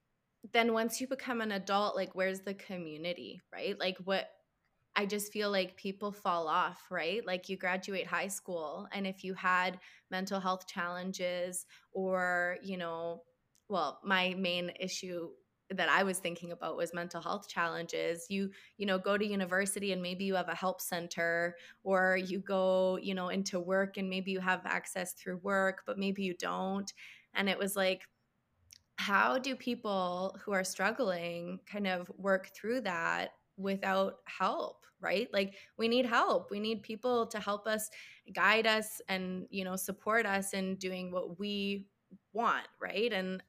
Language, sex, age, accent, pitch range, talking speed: English, female, 20-39, American, 180-200 Hz, 170 wpm